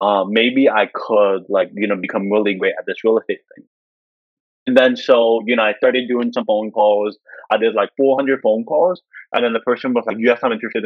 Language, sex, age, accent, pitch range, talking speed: English, male, 20-39, American, 100-135 Hz, 225 wpm